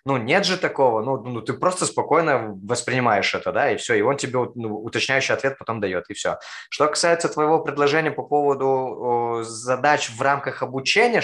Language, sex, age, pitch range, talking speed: Russian, male, 20-39, 120-155 Hz, 180 wpm